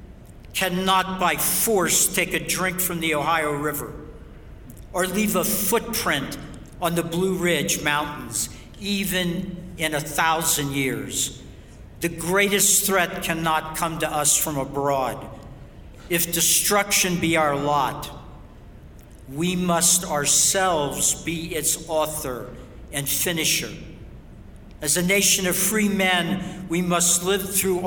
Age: 60-79